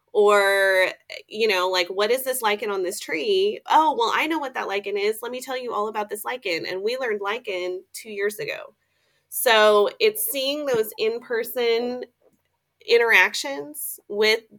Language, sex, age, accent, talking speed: English, female, 30-49, American, 170 wpm